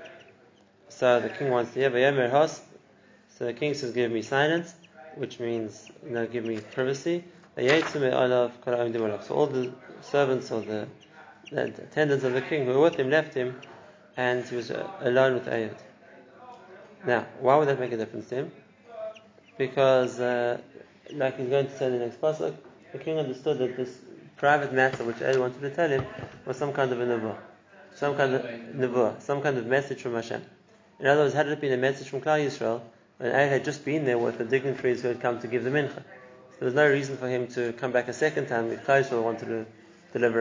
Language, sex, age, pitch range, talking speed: English, male, 20-39, 120-140 Hz, 200 wpm